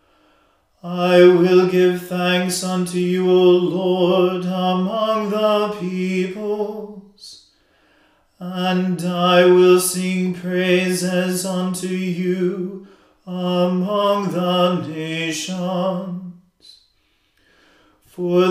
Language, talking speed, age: English, 70 wpm, 40-59